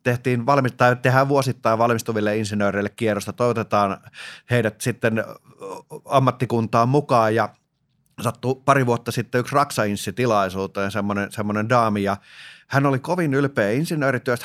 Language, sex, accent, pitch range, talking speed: Finnish, male, native, 110-140 Hz, 100 wpm